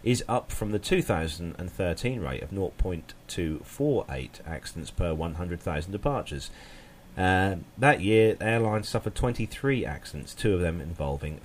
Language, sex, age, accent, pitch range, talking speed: English, male, 40-59, British, 80-110 Hz, 125 wpm